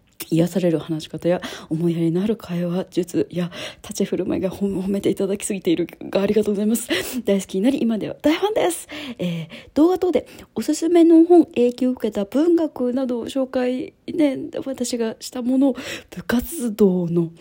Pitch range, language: 195-275 Hz, Japanese